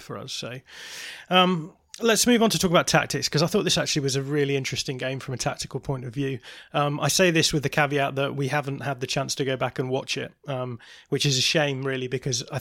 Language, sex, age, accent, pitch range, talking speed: English, male, 20-39, British, 135-150 Hz, 255 wpm